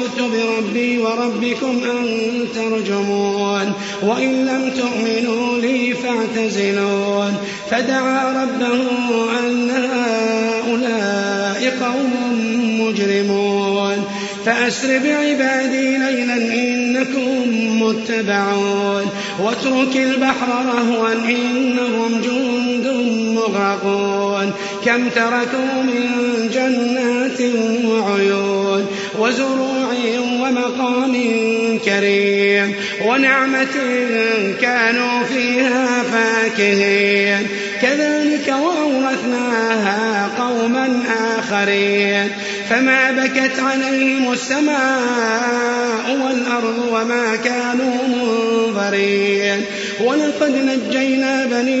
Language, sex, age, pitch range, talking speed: Arabic, male, 30-49, 210-255 Hz, 60 wpm